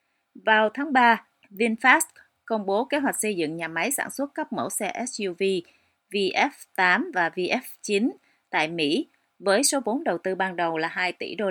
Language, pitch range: Vietnamese, 180-240 Hz